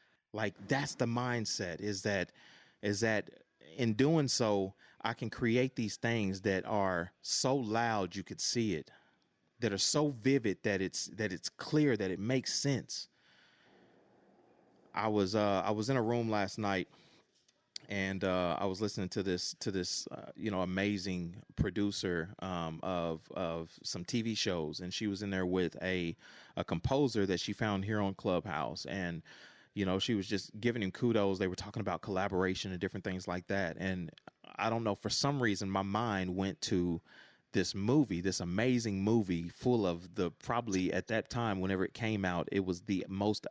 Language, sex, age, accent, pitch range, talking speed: English, male, 30-49, American, 95-115 Hz, 180 wpm